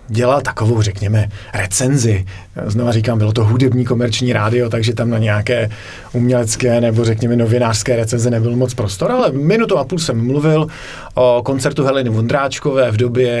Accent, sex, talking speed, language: native, male, 155 wpm, Czech